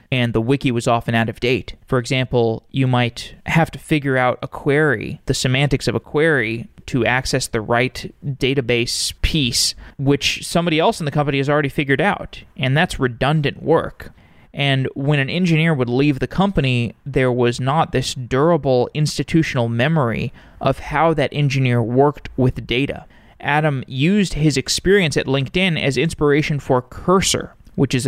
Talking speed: 165 wpm